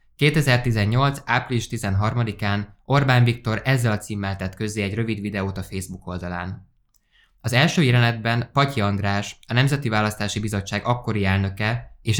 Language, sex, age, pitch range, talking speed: Hungarian, male, 20-39, 95-125 Hz, 140 wpm